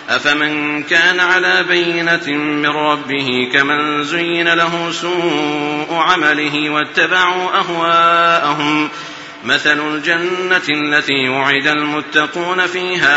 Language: Arabic